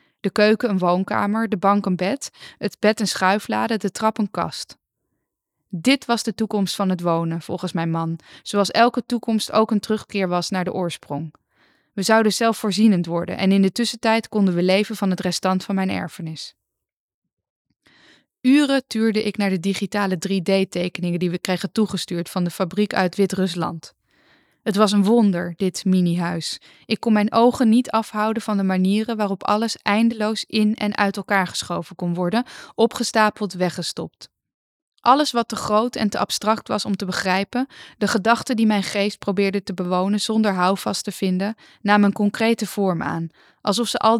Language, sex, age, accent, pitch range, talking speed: Dutch, female, 20-39, Dutch, 185-220 Hz, 170 wpm